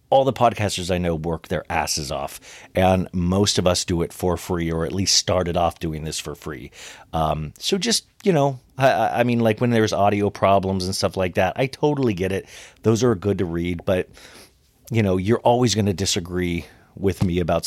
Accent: American